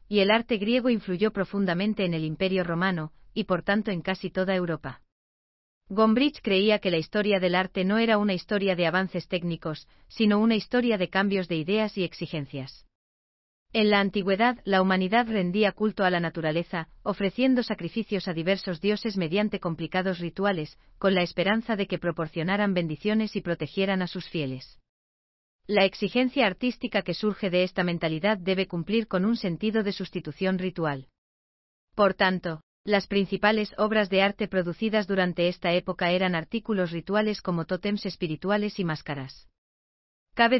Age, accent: 40-59, Spanish